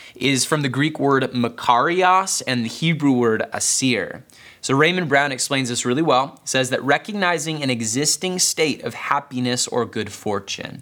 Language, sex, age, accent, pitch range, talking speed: English, male, 20-39, American, 120-155 Hz, 160 wpm